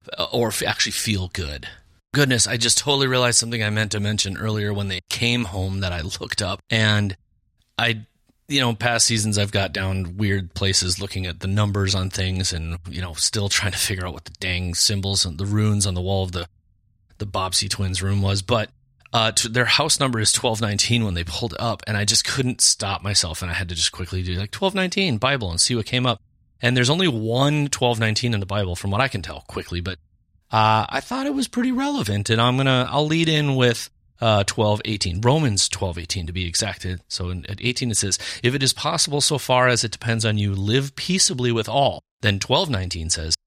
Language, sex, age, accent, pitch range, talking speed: English, male, 30-49, American, 95-120 Hz, 220 wpm